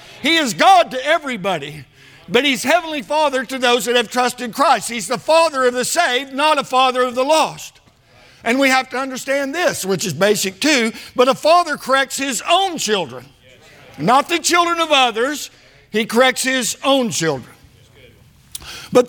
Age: 60-79